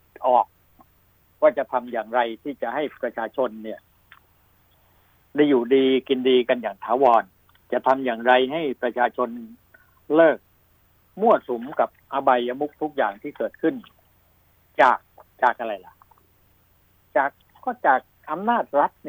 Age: 60-79